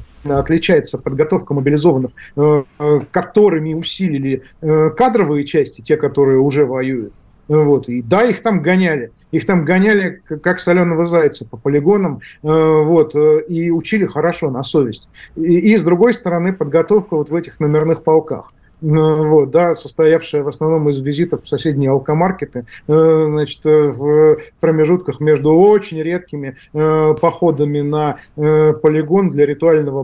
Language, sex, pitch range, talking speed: Russian, male, 145-170 Hz, 125 wpm